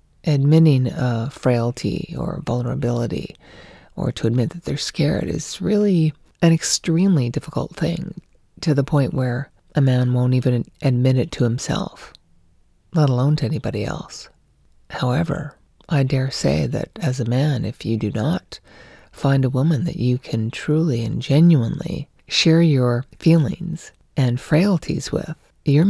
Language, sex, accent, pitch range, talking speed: English, female, American, 125-160 Hz, 145 wpm